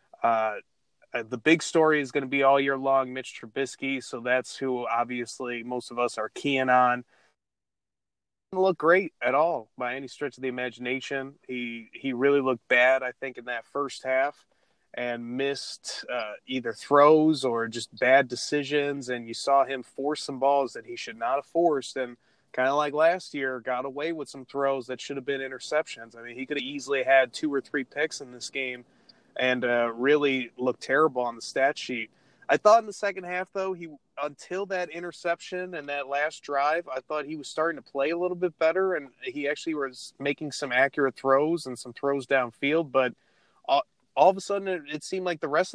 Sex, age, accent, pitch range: male, 30-49, American, 125-150 Hz